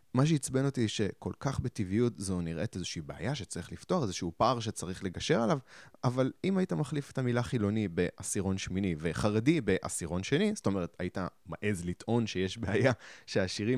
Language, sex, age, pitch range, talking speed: Hebrew, male, 20-39, 90-130 Hz, 160 wpm